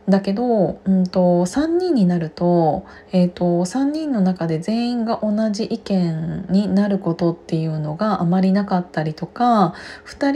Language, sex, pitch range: Japanese, female, 170-215 Hz